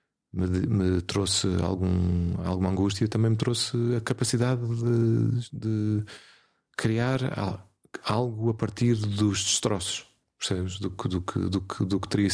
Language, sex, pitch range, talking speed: Portuguese, male, 90-105 Hz, 110 wpm